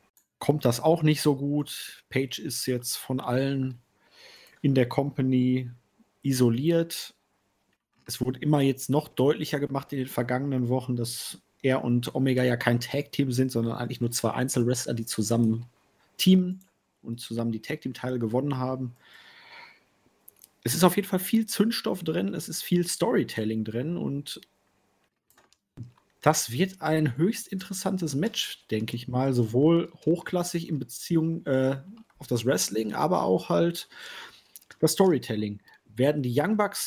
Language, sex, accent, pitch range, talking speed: German, male, German, 125-165 Hz, 145 wpm